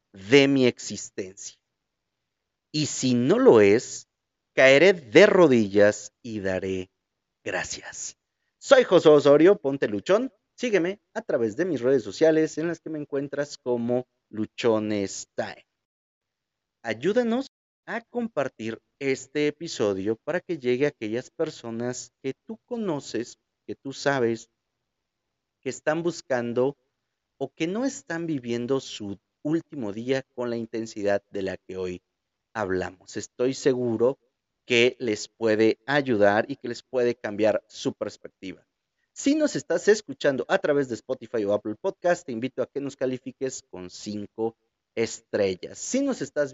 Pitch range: 110-165 Hz